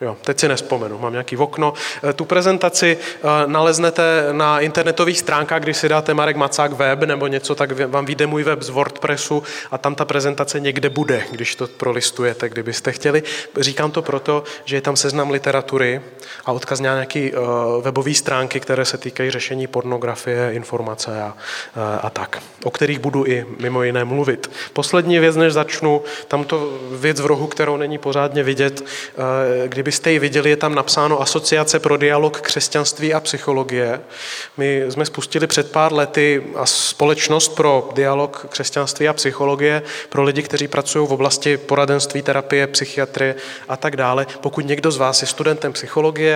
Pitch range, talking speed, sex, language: 130-150 Hz, 165 wpm, male, Czech